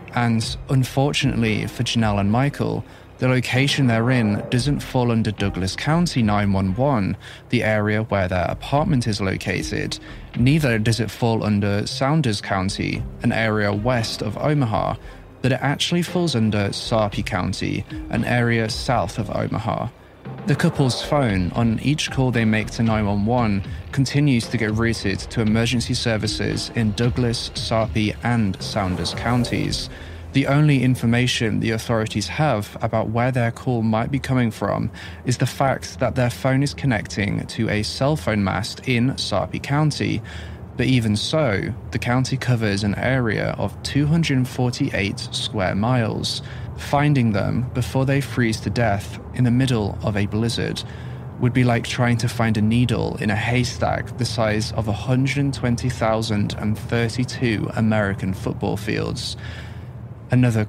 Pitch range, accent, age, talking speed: 105-125 Hz, British, 20-39, 140 wpm